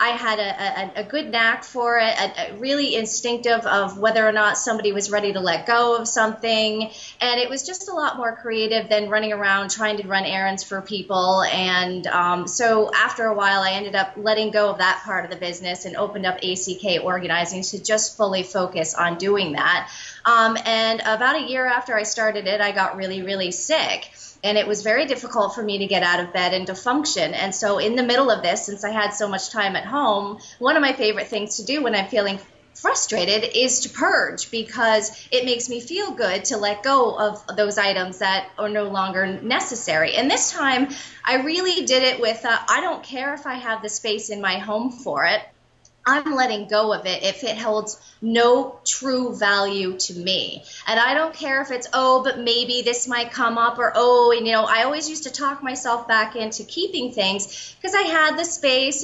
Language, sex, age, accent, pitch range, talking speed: English, female, 30-49, American, 200-255 Hz, 215 wpm